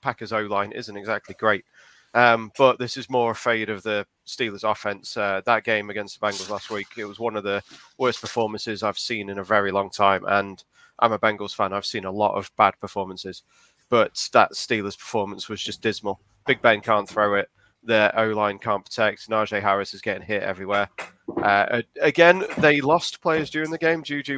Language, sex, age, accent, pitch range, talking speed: English, male, 30-49, British, 100-115 Hz, 200 wpm